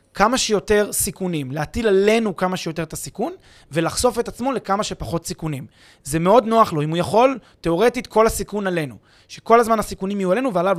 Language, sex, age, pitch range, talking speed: Hebrew, male, 20-39, 155-220 Hz, 180 wpm